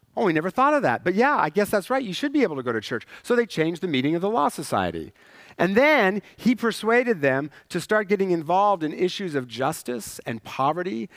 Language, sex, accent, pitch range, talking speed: English, male, American, 130-185 Hz, 235 wpm